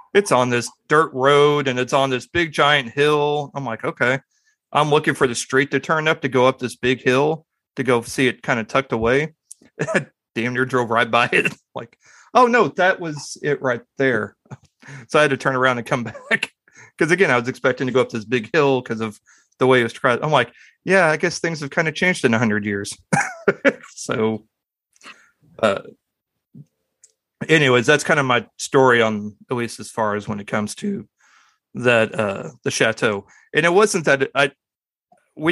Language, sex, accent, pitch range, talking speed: English, male, American, 115-145 Hz, 205 wpm